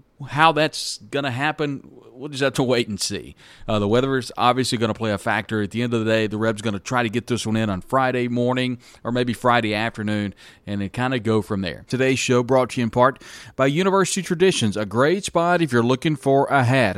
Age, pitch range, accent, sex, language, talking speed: 40-59, 110-135 Hz, American, male, English, 250 wpm